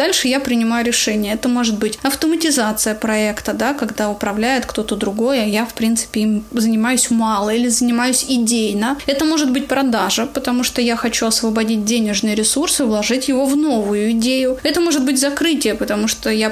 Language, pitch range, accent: Russian, 220-265 Hz, native